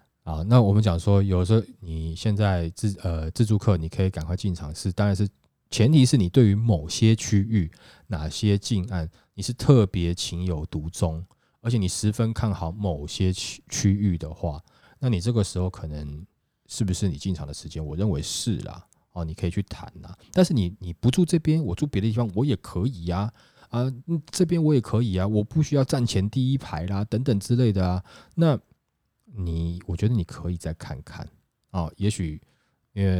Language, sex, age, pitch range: Chinese, male, 20-39, 85-110 Hz